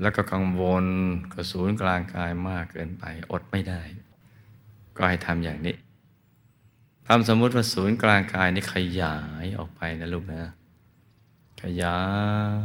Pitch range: 85-105 Hz